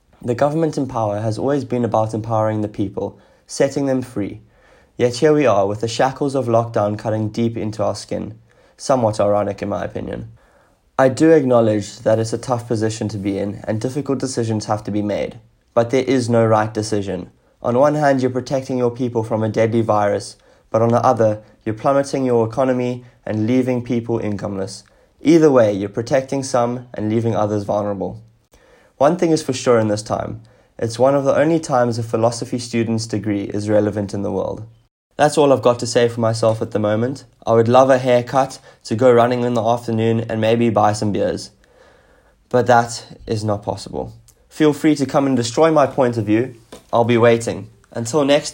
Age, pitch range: 20-39, 105-125 Hz